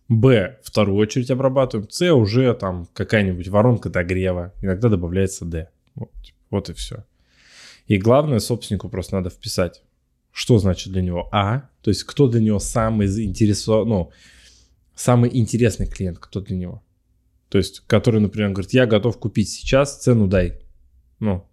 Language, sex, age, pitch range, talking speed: Russian, male, 20-39, 95-115 Hz, 150 wpm